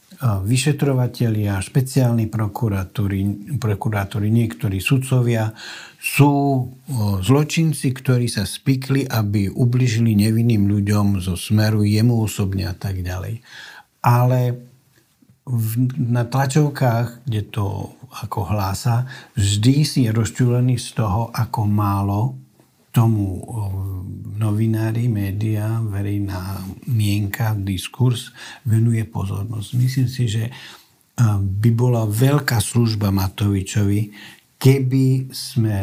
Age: 60-79